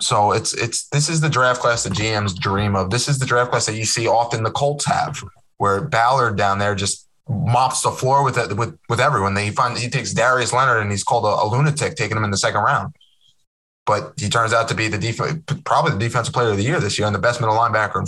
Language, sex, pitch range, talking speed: English, male, 110-145 Hz, 250 wpm